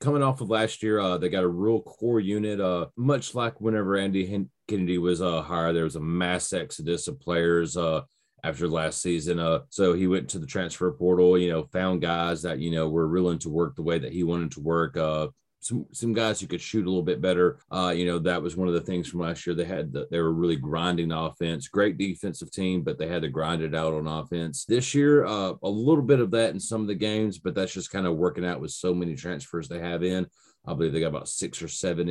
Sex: male